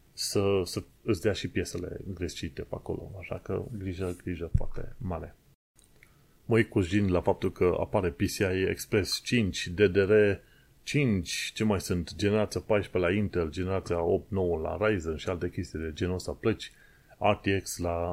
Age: 30-49